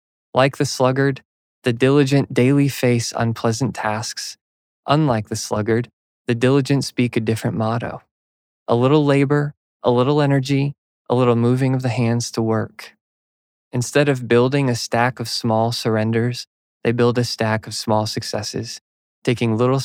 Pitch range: 110-130 Hz